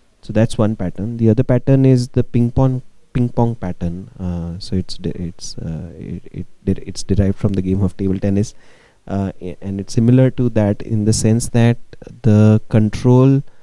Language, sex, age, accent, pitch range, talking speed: English, male, 20-39, Indian, 90-115 Hz, 195 wpm